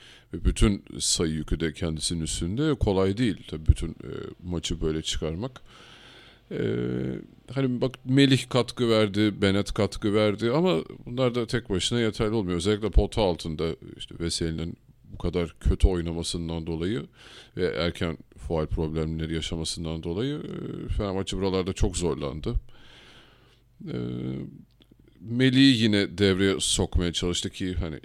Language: Turkish